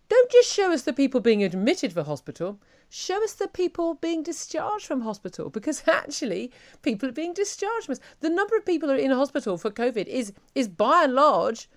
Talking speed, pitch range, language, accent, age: 200 wpm, 215-310 Hz, English, British, 40-59